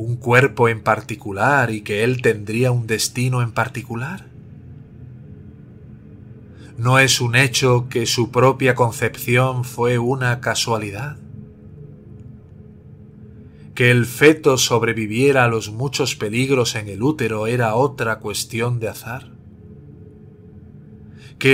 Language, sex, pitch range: Spanish, male, 105-130 Hz